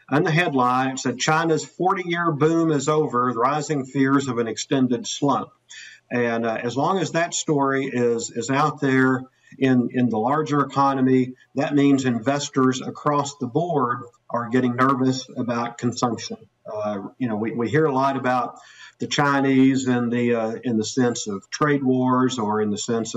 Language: English